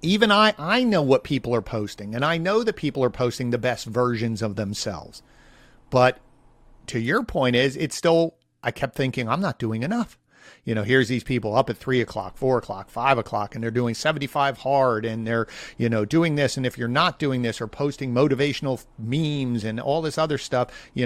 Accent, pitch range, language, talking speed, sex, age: American, 115-140 Hz, English, 210 wpm, male, 50-69